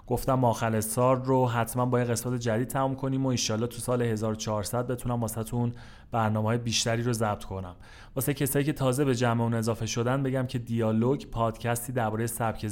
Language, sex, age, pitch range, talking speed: Persian, male, 30-49, 110-130 Hz, 185 wpm